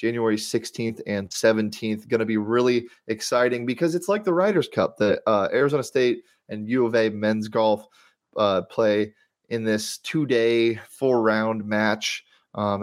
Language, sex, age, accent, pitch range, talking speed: English, male, 30-49, American, 105-120 Hz, 165 wpm